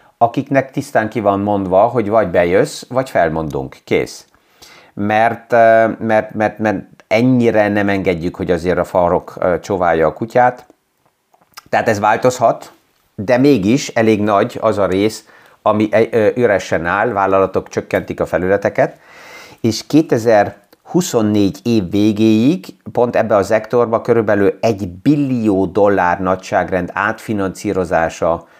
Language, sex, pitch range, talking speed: Hungarian, male, 100-120 Hz, 115 wpm